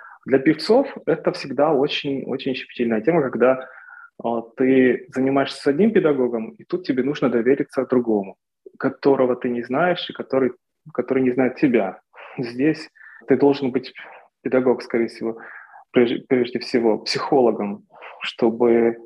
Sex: male